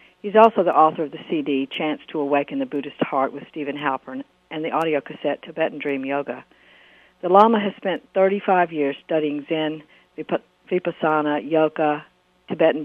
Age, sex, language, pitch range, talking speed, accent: 60-79, female, English, 145-170 Hz, 160 wpm, American